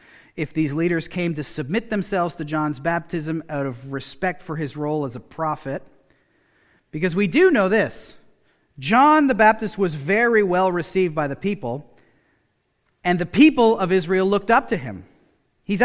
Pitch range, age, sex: 165-230 Hz, 40-59, male